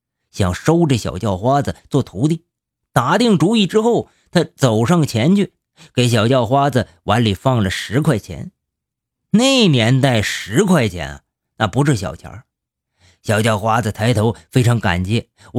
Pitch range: 100-145 Hz